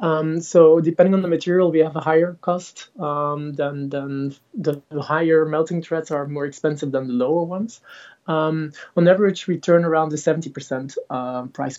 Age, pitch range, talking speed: 20-39, 140-165 Hz, 170 wpm